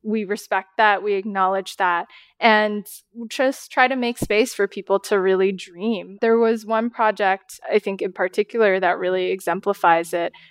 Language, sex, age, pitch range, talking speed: English, female, 20-39, 185-225 Hz, 165 wpm